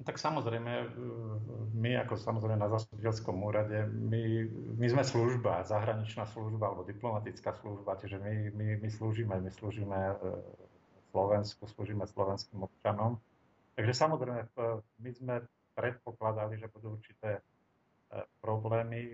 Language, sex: Slovak, male